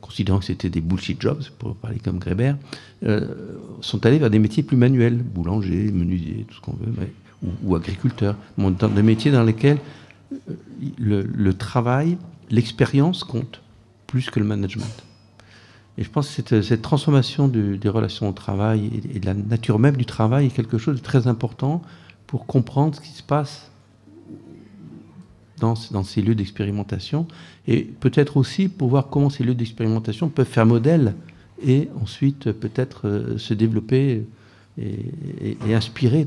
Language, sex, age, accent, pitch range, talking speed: French, male, 50-69, French, 105-130 Hz, 160 wpm